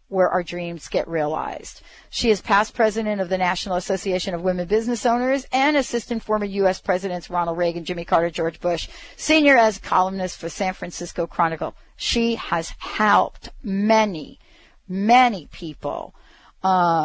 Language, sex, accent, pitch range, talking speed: English, female, American, 180-245 Hz, 150 wpm